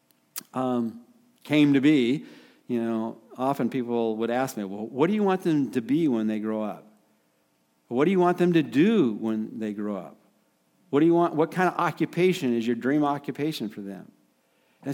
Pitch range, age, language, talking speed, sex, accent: 110-165 Hz, 50-69, English, 195 wpm, male, American